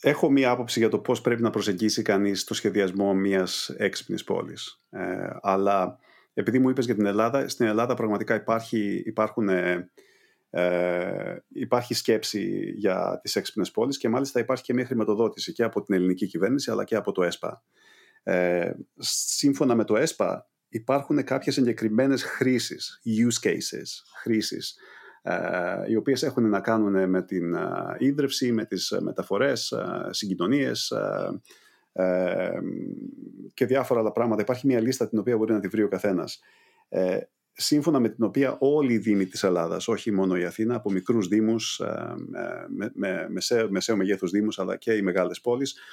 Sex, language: male, Greek